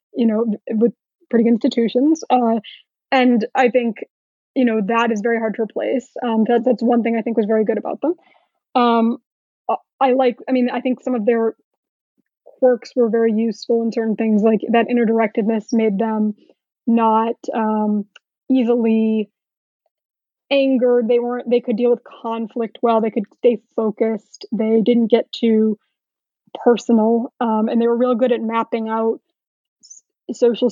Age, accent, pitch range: 20-39, American, 220-240 Hz